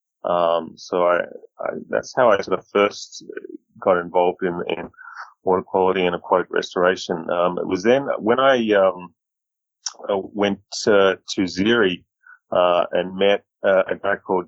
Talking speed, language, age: 160 wpm, English, 30-49